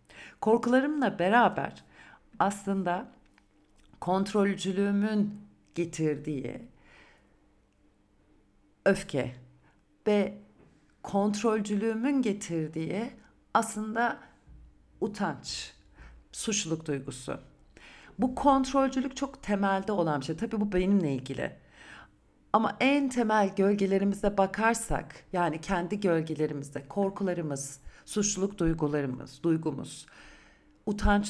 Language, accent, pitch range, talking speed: Turkish, native, 155-205 Hz, 70 wpm